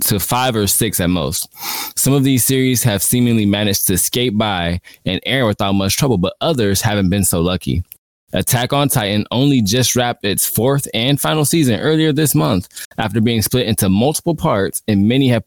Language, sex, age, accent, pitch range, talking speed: English, male, 20-39, American, 100-130 Hz, 195 wpm